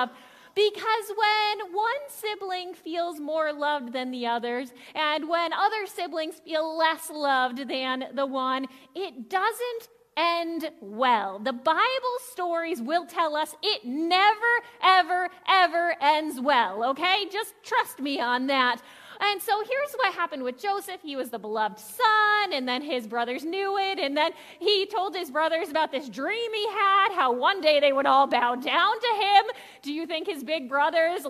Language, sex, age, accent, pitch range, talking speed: English, female, 30-49, American, 285-405 Hz, 165 wpm